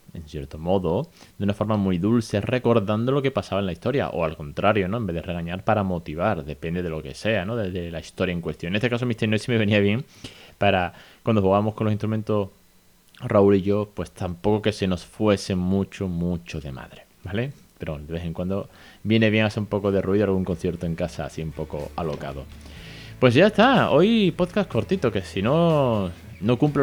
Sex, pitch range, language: male, 90-115 Hz, Spanish